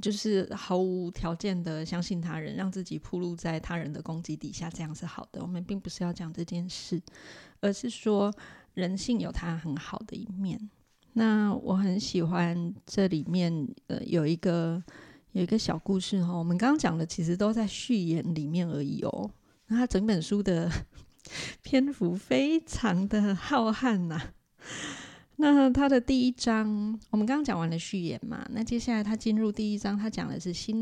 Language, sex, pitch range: Chinese, female, 175-215 Hz